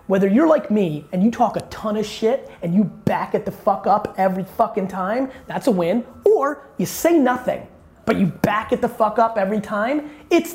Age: 30-49